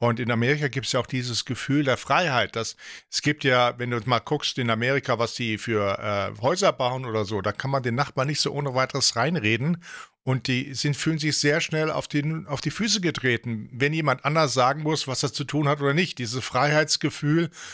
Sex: male